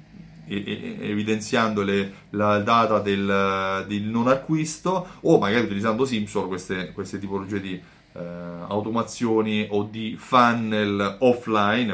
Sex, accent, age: male, native, 30-49